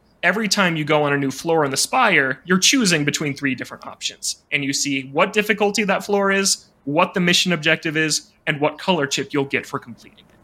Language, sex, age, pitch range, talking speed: English, male, 30-49, 140-175 Hz, 225 wpm